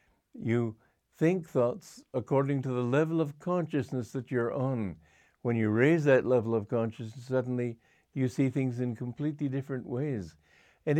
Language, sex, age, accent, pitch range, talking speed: English, male, 60-79, American, 110-140 Hz, 155 wpm